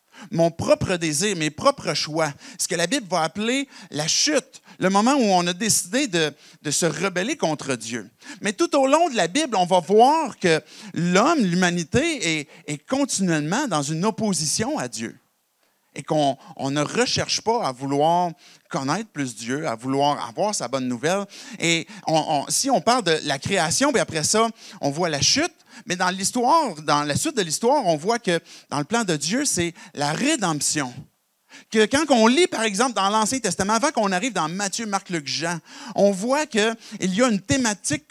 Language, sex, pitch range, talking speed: French, male, 155-225 Hz, 185 wpm